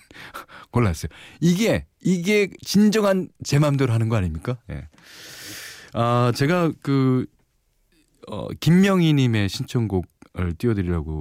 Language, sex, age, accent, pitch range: Korean, male, 40-59, native, 85-130 Hz